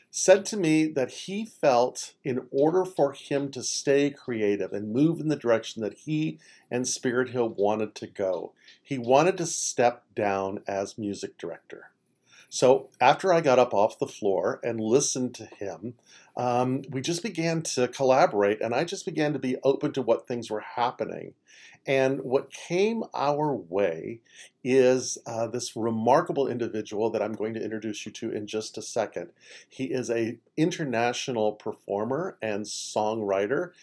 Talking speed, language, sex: 165 wpm, English, male